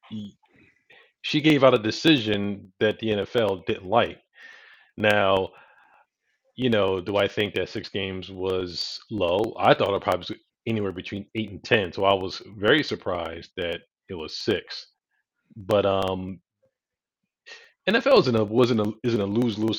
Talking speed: 160 wpm